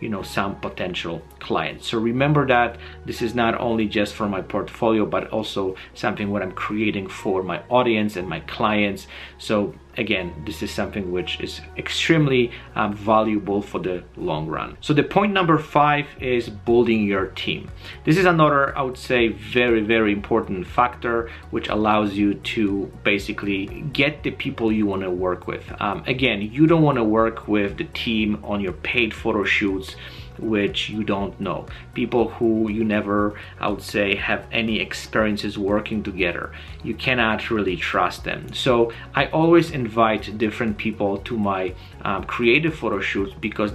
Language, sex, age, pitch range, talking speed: English, male, 30-49, 100-120 Hz, 165 wpm